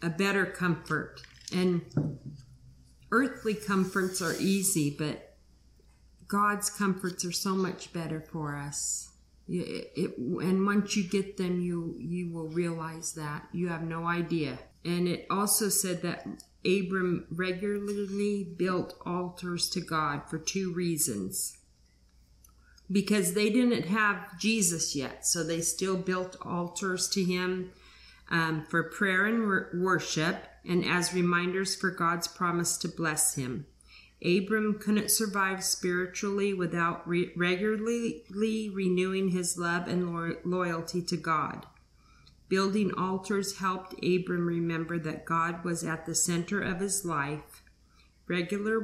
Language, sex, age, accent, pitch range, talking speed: English, female, 50-69, American, 160-190 Hz, 125 wpm